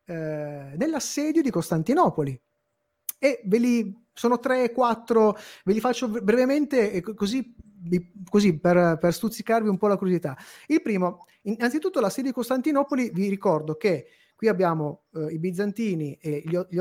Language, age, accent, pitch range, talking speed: Italian, 30-49, native, 160-230 Hz, 130 wpm